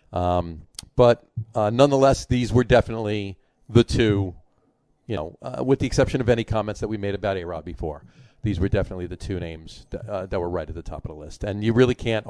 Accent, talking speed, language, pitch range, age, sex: American, 220 wpm, English, 90-120 Hz, 40-59, male